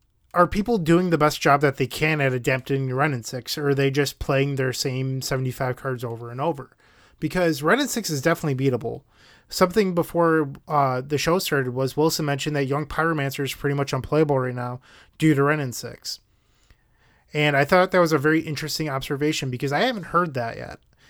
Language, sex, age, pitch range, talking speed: English, male, 20-39, 135-165 Hz, 195 wpm